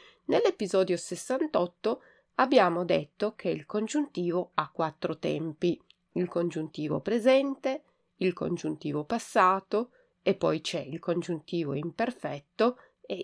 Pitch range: 170-245 Hz